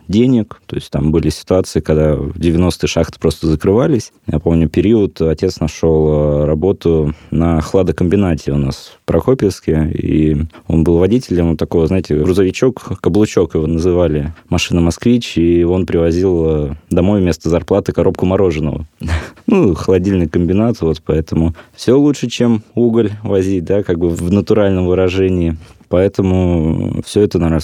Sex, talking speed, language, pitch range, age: male, 140 wpm, Russian, 80-95 Hz, 20-39